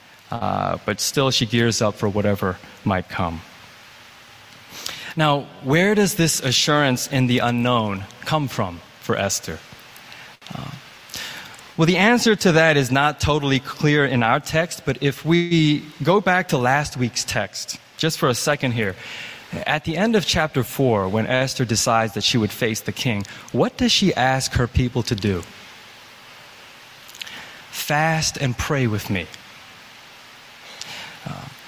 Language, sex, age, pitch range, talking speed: English, male, 20-39, 110-150 Hz, 150 wpm